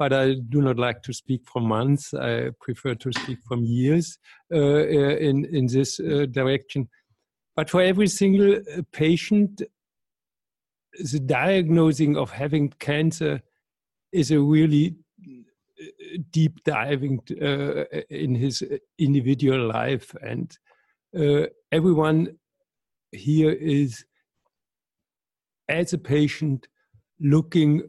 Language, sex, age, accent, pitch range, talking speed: English, male, 60-79, German, 140-170 Hz, 110 wpm